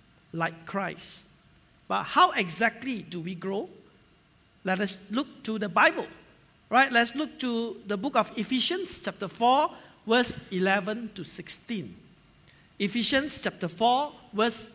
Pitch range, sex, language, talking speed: 195-270 Hz, male, English, 130 wpm